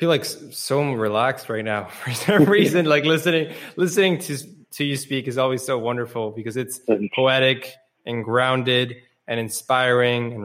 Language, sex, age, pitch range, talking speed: English, male, 10-29, 120-155 Hz, 165 wpm